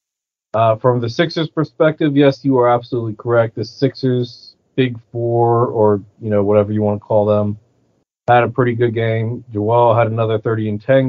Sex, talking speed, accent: male, 185 wpm, American